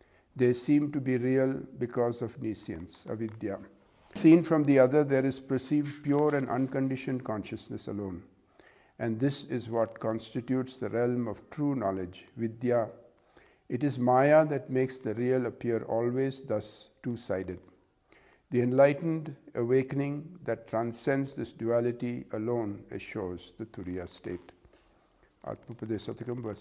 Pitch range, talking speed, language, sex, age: 110-135 Hz, 130 wpm, English, male, 60-79